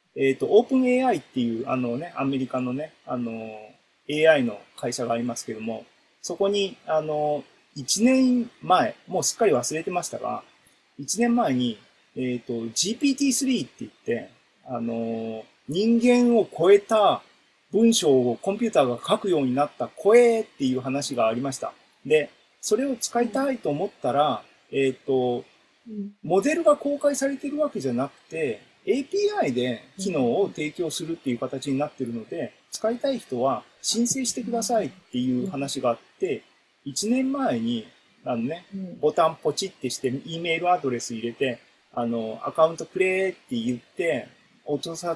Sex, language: male, Japanese